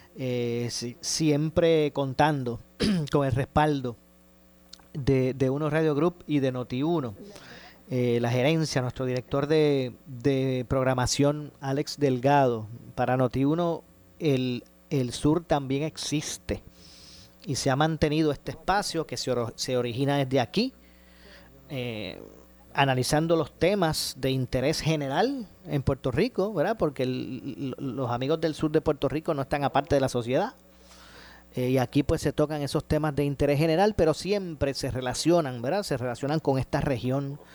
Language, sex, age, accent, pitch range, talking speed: Spanish, male, 40-59, American, 125-150 Hz, 150 wpm